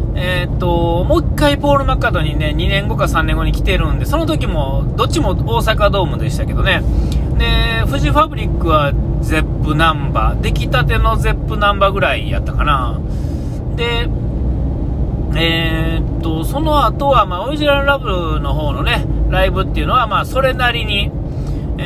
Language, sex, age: Japanese, male, 40-59